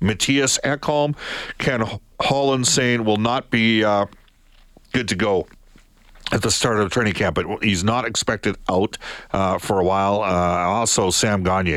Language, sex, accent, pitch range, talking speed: English, male, American, 90-125 Hz, 160 wpm